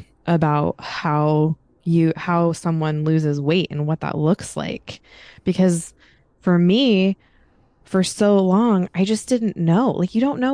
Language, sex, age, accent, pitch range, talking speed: English, female, 20-39, American, 155-195 Hz, 150 wpm